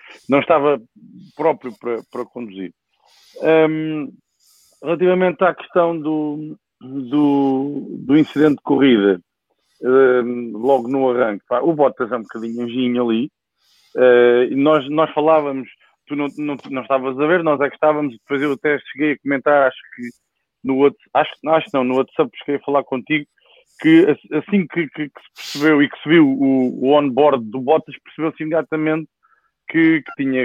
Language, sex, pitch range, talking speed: English, male, 125-150 Hz, 160 wpm